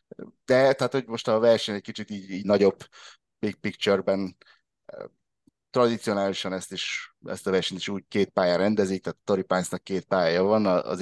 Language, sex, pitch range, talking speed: Hungarian, male, 90-105 Hz, 170 wpm